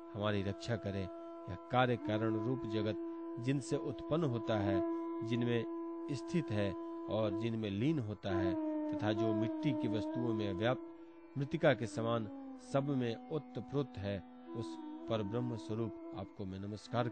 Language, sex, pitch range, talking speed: Hindi, male, 105-165 Hz, 90 wpm